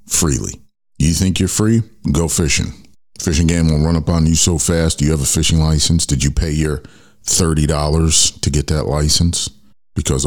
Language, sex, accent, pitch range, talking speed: English, male, American, 70-90 Hz, 185 wpm